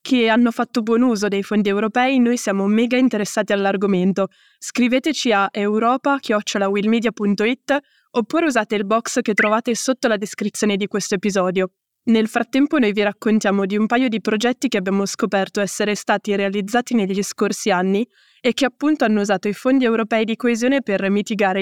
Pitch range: 200-240 Hz